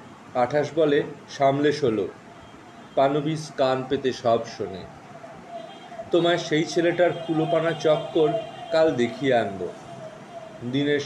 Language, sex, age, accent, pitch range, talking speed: Bengali, male, 40-59, native, 130-165 Hz, 100 wpm